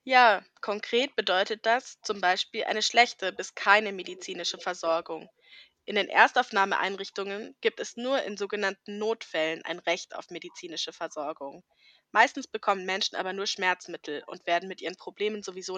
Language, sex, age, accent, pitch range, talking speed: German, female, 20-39, German, 185-235 Hz, 145 wpm